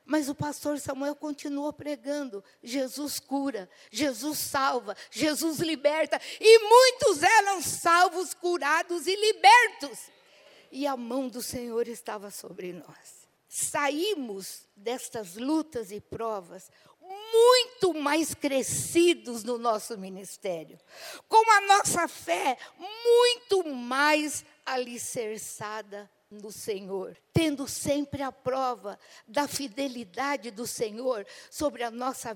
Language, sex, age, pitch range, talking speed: Portuguese, female, 60-79, 240-335 Hz, 110 wpm